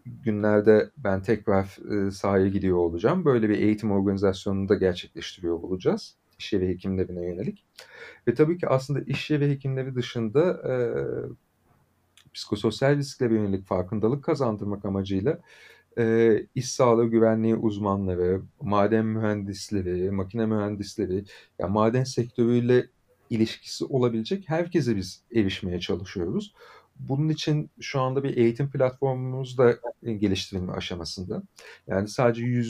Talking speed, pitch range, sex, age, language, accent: 115 wpm, 100-130 Hz, male, 40-59, Turkish, native